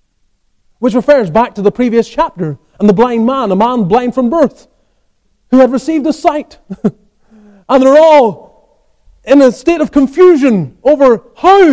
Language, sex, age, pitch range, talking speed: English, male, 30-49, 190-295 Hz, 160 wpm